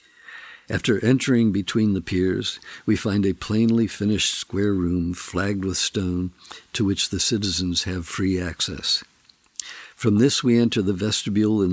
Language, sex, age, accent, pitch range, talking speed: English, male, 60-79, American, 95-115 Hz, 150 wpm